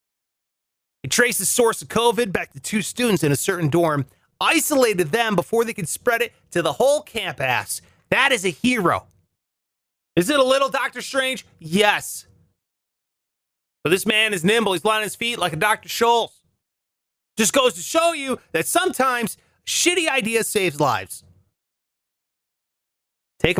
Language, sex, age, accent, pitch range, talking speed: English, male, 30-49, American, 155-240 Hz, 160 wpm